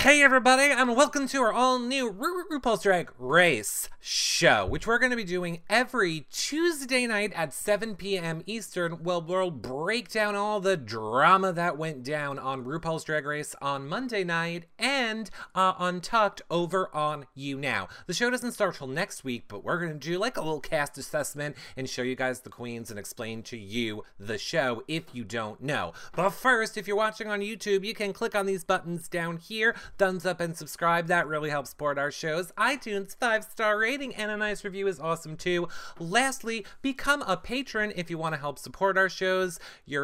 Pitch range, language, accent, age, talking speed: 150-215 Hz, English, American, 30-49, 200 wpm